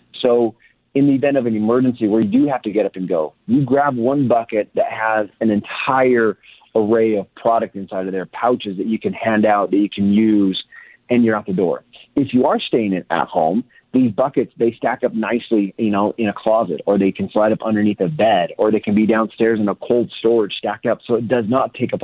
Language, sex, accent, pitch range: English, male, American, 105-125 Hz